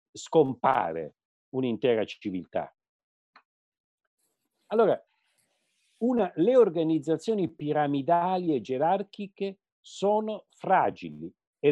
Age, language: 50-69, Italian